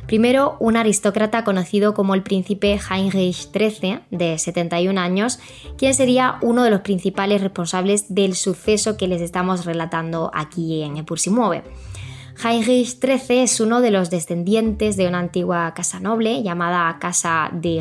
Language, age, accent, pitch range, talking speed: Spanish, 20-39, Spanish, 175-215 Hz, 145 wpm